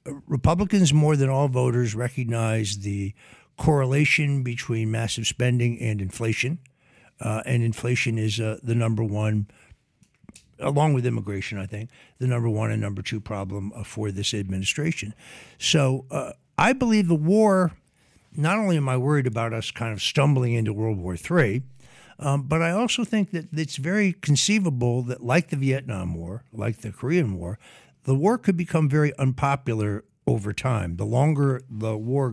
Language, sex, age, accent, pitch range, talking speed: English, male, 60-79, American, 110-145 Hz, 160 wpm